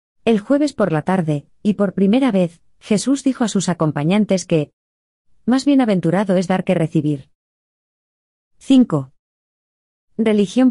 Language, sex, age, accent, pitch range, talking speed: Spanish, female, 20-39, Spanish, 155-205 Hz, 130 wpm